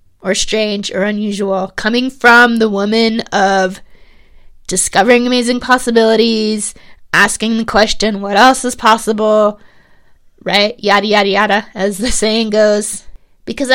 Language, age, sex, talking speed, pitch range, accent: English, 20-39, female, 120 wpm, 195-230 Hz, American